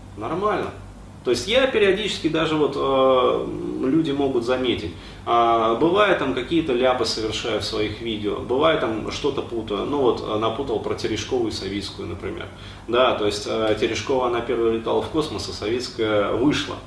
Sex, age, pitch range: male, 30-49, 115-160 Hz